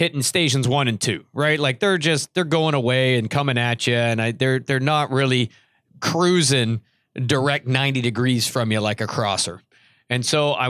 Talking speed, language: 190 wpm, English